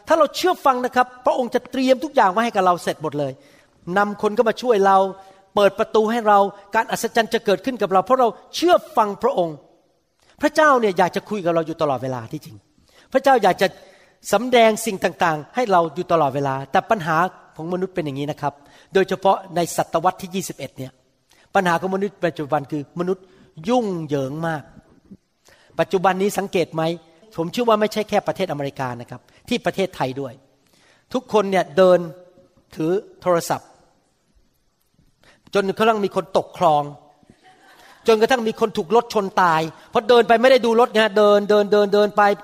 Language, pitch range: Thai, 175-250 Hz